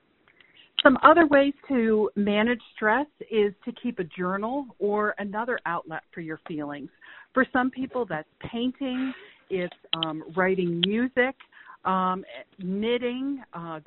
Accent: American